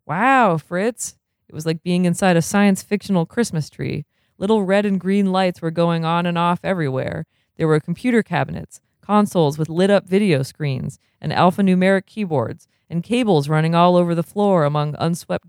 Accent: American